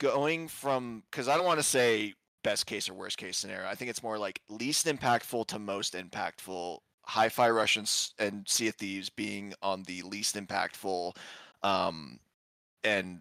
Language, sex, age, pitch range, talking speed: English, male, 20-39, 105-135 Hz, 170 wpm